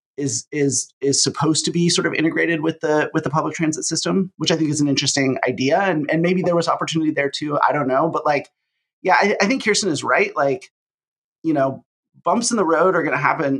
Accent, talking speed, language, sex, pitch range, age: American, 240 wpm, English, male, 140-175 Hz, 30-49